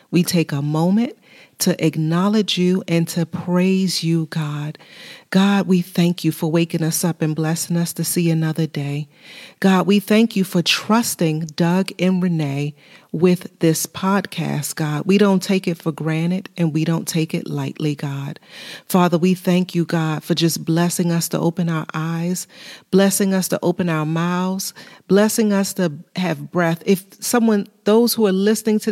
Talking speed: 175 wpm